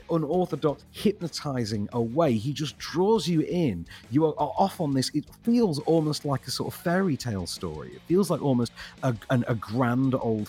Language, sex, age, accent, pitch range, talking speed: English, male, 40-59, British, 100-145 Hz, 185 wpm